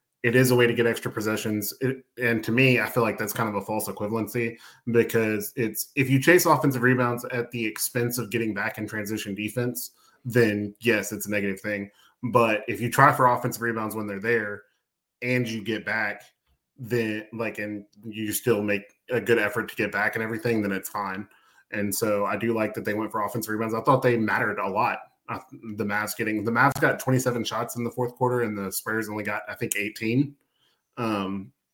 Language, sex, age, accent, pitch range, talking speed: English, male, 20-39, American, 105-125 Hz, 210 wpm